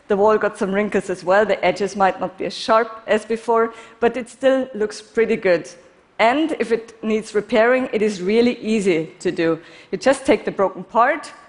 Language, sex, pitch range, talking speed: Russian, female, 200-255 Hz, 205 wpm